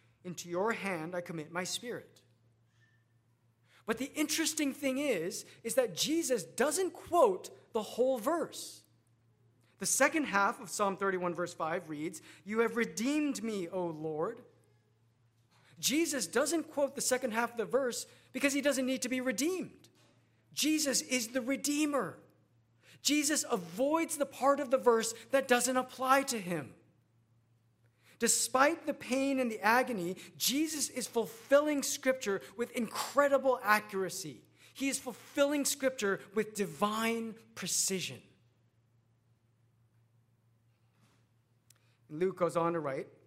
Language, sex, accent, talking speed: English, male, American, 130 wpm